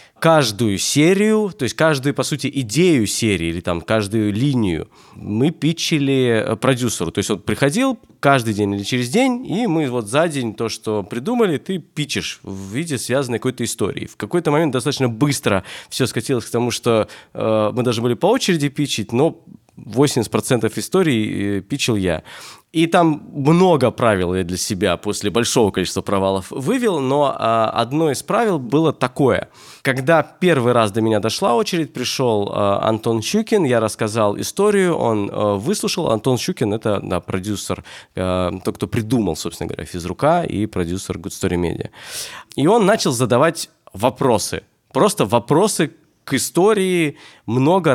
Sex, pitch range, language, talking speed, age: male, 105-155 Hz, Russian, 155 wpm, 20-39